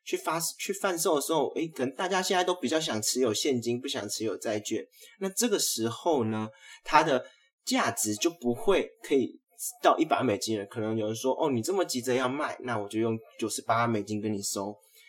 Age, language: 20-39, Chinese